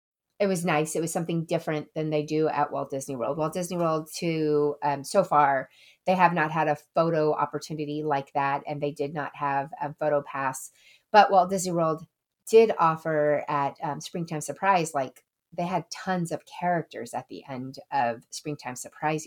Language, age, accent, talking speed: English, 30-49, American, 185 wpm